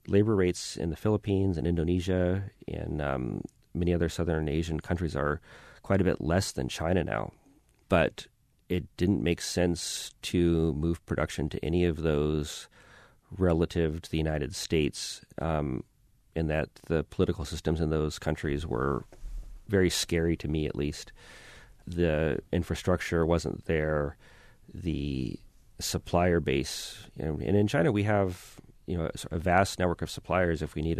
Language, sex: English, male